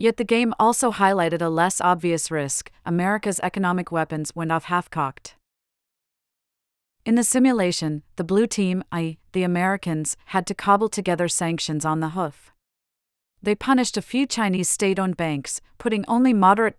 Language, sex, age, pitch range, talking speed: English, female, 40-59, 160-200 Hz, 150 wpm